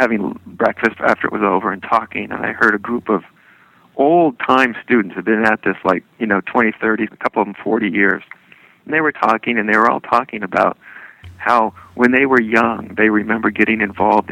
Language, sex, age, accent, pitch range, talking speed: English, male, 40-59, American, 95-125 Hz, 210 wpm